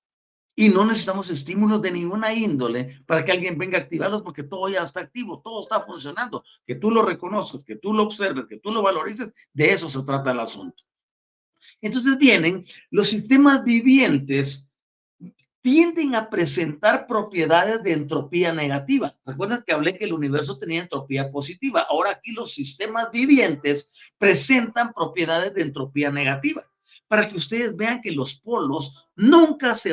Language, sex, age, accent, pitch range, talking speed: Spanish, male, 50-69, Mexican, 160-245 Hz, 160 wpm